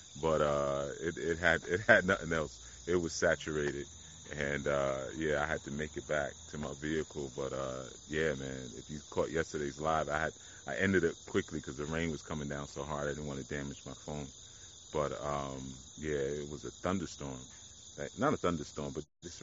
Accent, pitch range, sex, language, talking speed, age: American, 75-95 Hz, male, English, 200 wpm, 30-49